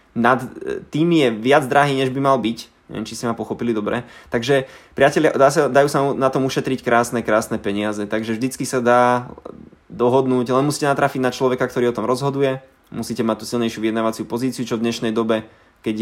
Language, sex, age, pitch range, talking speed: Slovak, male, 20-39, 115-130 Hz, 185 wpm